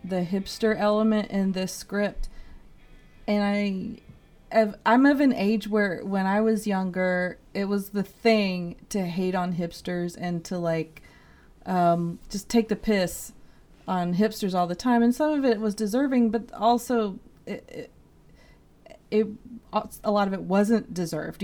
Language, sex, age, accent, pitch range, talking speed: English, female, 30-49, American, 185-235 Hz, 155 wpm